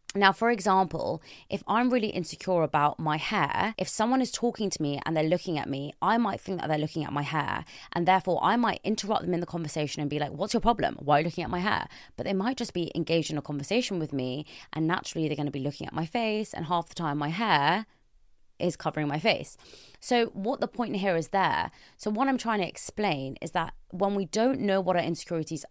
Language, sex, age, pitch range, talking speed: English, female, 20-39, 155-195 Hz, 245 wpm